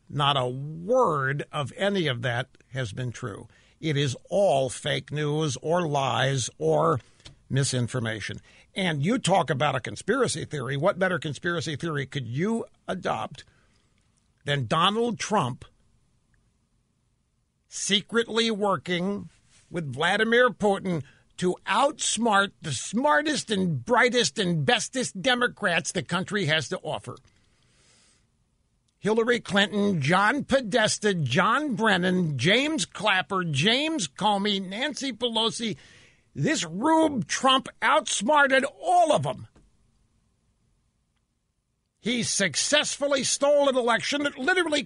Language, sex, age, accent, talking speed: English, male, 60-79, American, 110 wpm